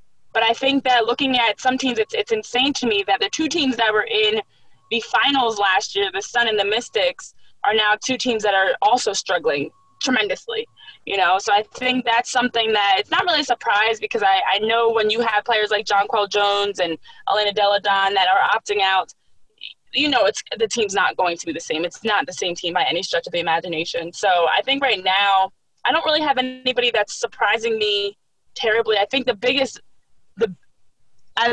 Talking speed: 210 wpm